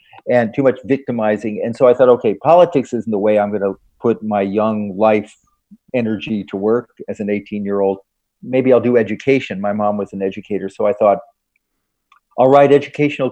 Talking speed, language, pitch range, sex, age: 185 wpm, English, 105-135 Hz, male, 40-59